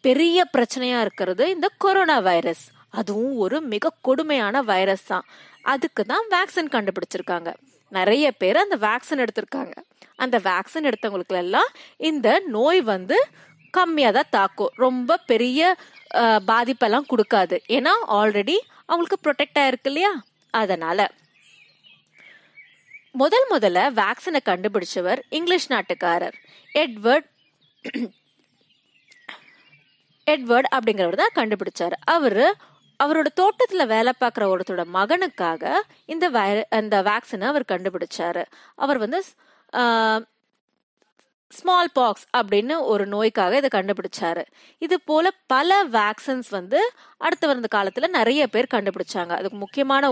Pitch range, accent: 200-310 Hz, native